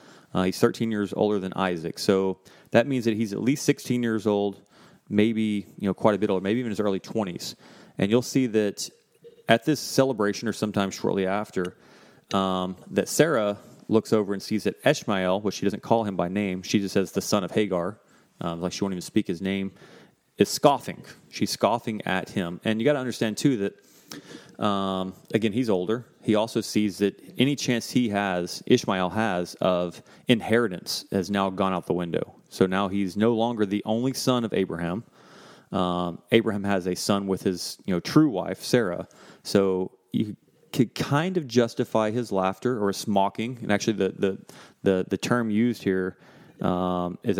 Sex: male